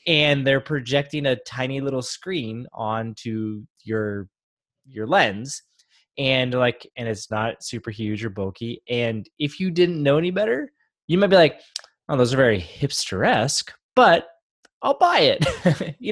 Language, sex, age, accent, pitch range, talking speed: English, male, 20-39, American, 105-145 Hz, 155 wpm